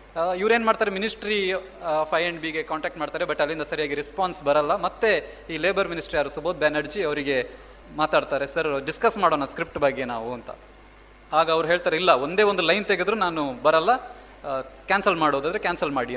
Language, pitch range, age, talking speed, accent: Kannada, 150-195 Hz, 20-39, 165 wpm, native